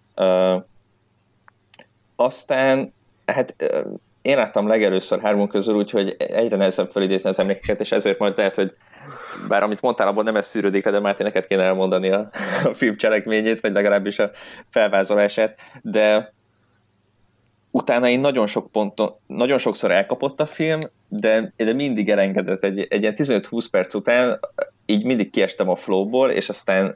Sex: male